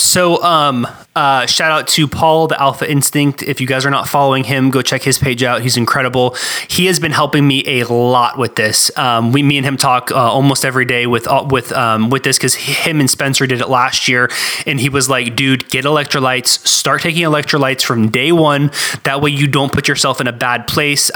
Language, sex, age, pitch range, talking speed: English, male, 20-39, 125-145 Hz, 225 wpm